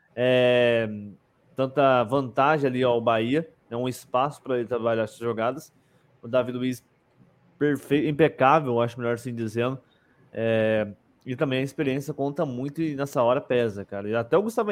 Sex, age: male, 20-39